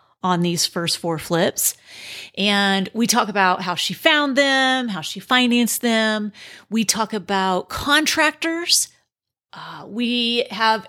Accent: American